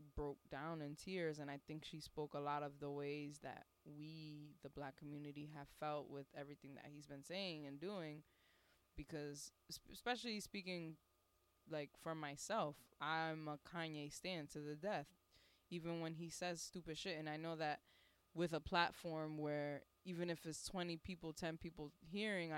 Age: 20-39